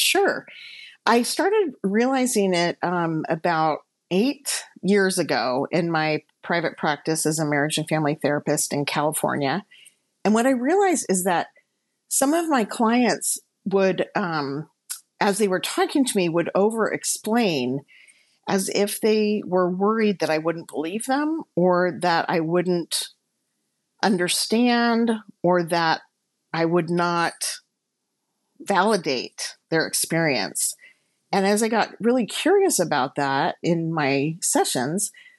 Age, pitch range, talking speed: 50-69, 160-215 Hz, 130 wpm